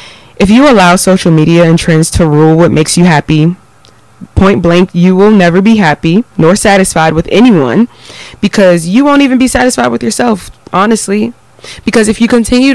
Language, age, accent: English, 20-39, American